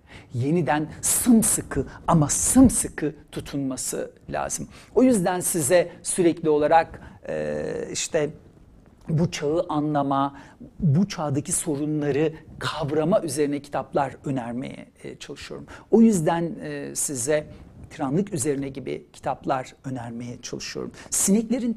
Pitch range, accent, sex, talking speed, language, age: 135-175 Hz, native, male, 90 wpm, Turkish, 60-79